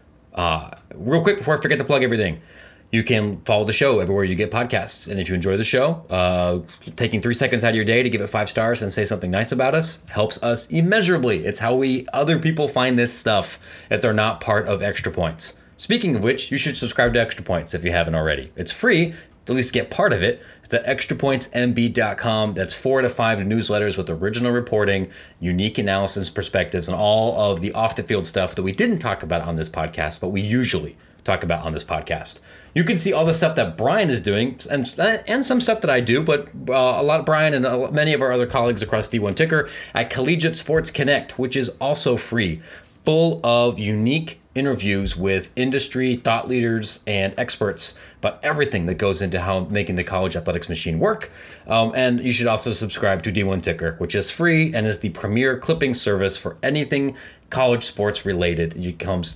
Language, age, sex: English, 30-49, male